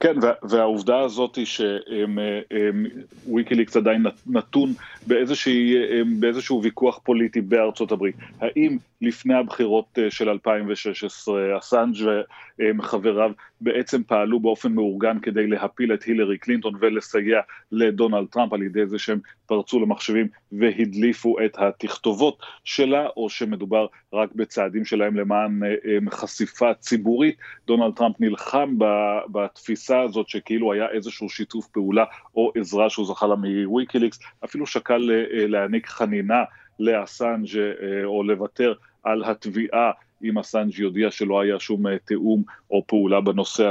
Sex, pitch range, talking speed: male, 105-115 Hz, 115 wpm